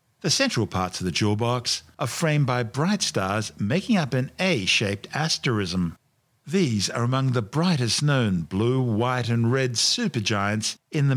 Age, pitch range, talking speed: 50-69, 105-140 Hz, 160 wpm